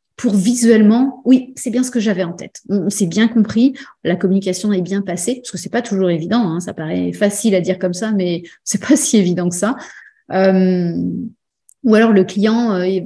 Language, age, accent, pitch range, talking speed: French, 30-49, French, 190-230 Hz, 210 wpm